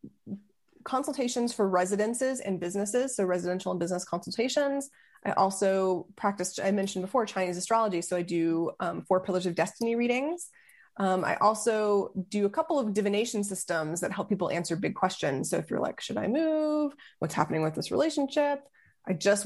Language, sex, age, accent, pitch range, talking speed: English, female, 20-39, American, 175-215 Hz, 175 wpm